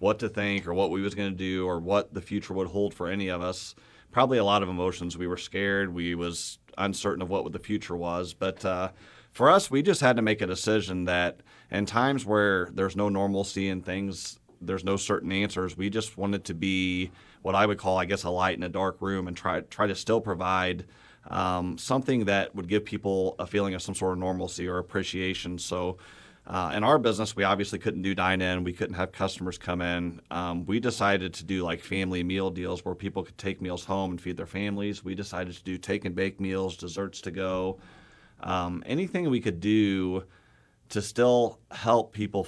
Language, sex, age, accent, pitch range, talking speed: English, male, 30-49, American, 90-100 Hz, 215 wpm